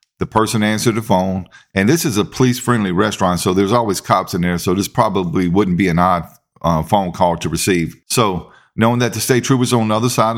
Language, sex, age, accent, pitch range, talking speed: English, male, 50-69, American, 100-115 Hz, 225 wpm